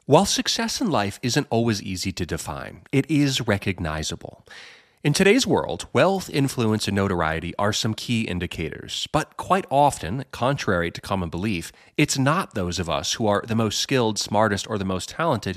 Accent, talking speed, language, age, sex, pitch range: American, 175 wpm, English, 30-49, male, 95-145 Hz